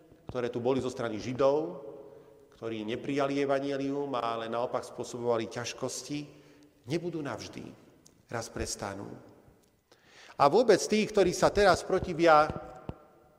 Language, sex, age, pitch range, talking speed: Slovak, male, 40-59, 120-165 Hz, 110 wpm